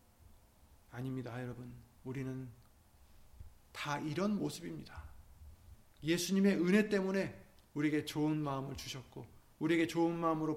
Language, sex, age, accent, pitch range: Korean, male, 30-49, native, 125-190 Hz